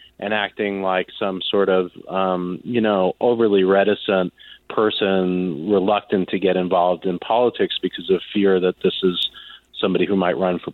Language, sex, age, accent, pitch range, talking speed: English, male, 40-59, American, 95-120 Hz, 160 wpm